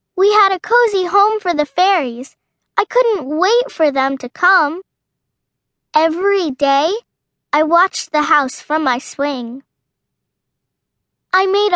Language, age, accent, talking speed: English, 10-29, American, 135 wpm